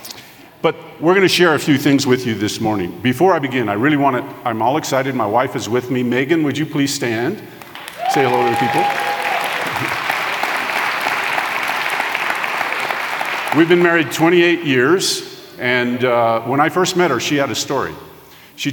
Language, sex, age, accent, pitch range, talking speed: English, male, 50-69, American, 110-155 Hz, 175 wpm